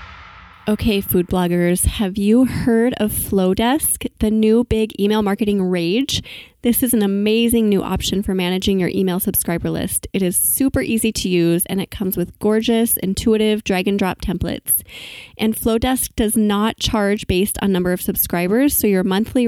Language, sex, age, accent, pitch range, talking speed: English, female, 20-39, American, 190-235 Hz, 170 wpm